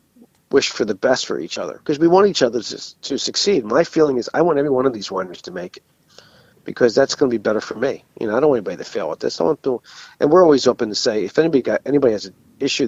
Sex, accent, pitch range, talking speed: male, American, 110-160 Hz, 290 wpm